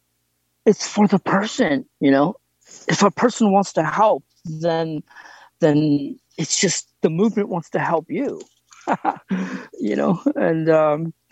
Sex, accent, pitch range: male, American, 150-200 Hz